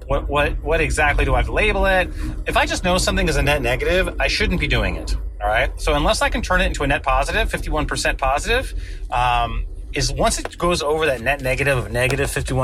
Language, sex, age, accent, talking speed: English, male, 30-49, American, 235 wpm